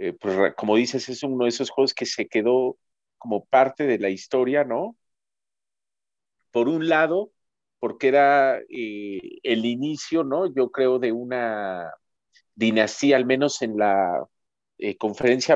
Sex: male